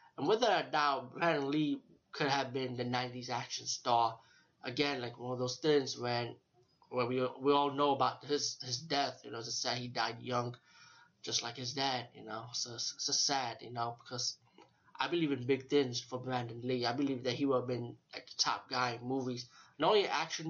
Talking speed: 215 wpm